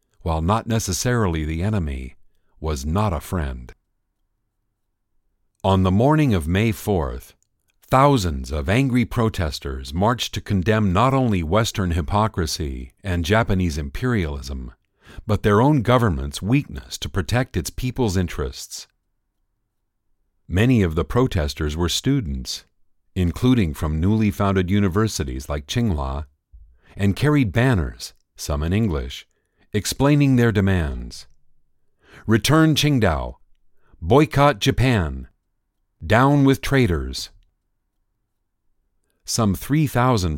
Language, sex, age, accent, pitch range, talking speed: English, male, 50-69, American, 80-115 Hz, 105 wpm